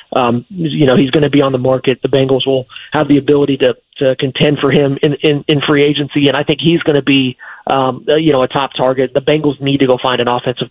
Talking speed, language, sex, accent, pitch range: 265 wpm, English, male, American, 130-145 Hz